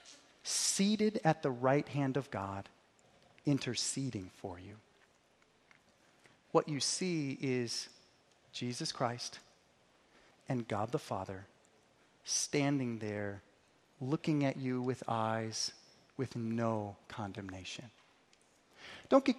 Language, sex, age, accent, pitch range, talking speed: English, male, 30-49, American, 130-195 Hz, 100 wpm